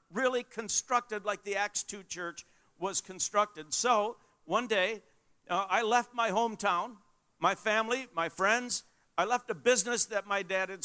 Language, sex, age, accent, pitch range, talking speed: English, male, 50-69, American, 185-230 Hz, 160 wpm